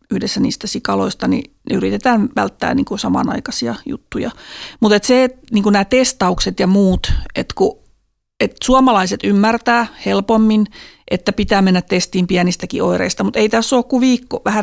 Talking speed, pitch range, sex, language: 145 wpm, 200-270 Hz, female, Finnish